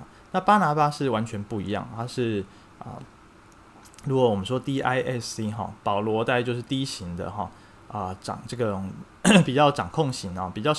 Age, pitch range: 20-39, 105-140 Hz